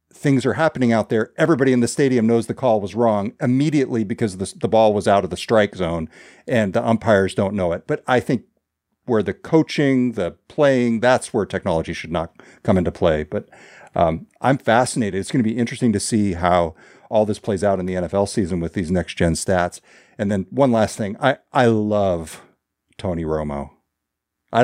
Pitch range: 95-130 Hz